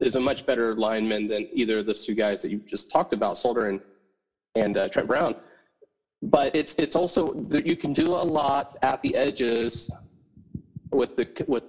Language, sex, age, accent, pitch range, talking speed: English, male, 30-49, American, 120-170 Hz, 195 wpm